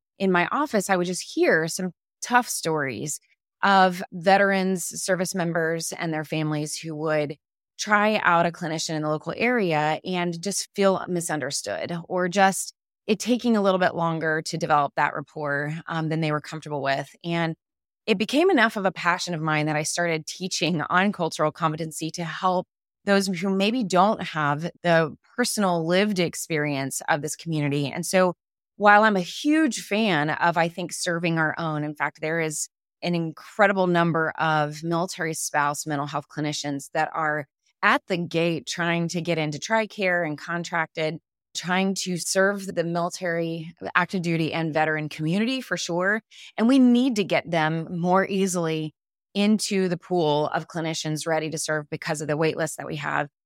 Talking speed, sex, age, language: 170 wpm, female, 20-39, English